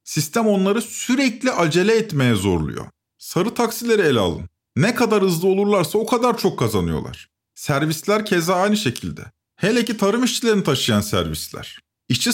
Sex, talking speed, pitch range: male, 140 wpm, 145-215 Hz